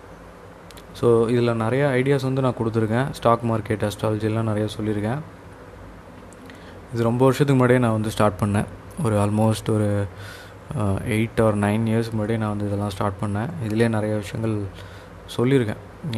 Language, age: Tamil, 20-39